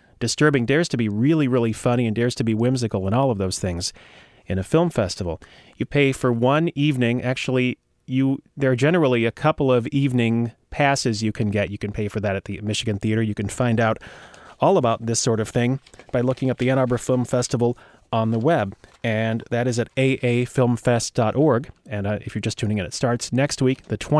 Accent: American